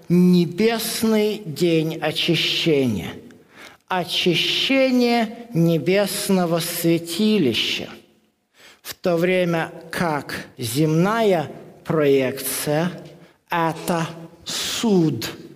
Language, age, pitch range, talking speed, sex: Russian, 50-69, 165-215 Hz, 55 wpm, male